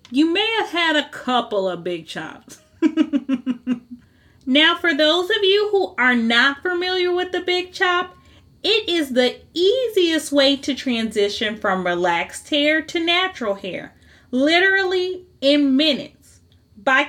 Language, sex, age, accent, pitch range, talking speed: English, female, 30-49, American, 235-340 Hz, 135 wpm